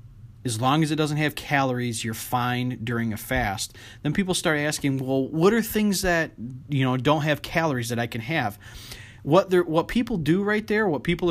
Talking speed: 205 wpm